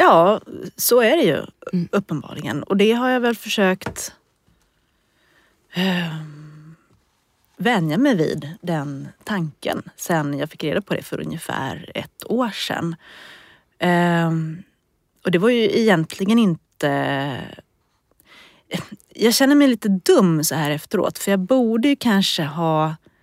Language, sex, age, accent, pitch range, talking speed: Swedish, female, 30-49, native, 155-200 Hz, 125 wpm